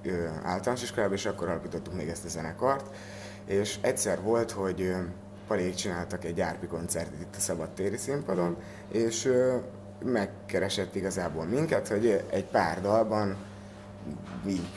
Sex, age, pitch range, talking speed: male, 30-49, 90-105 Hz, 125 wpm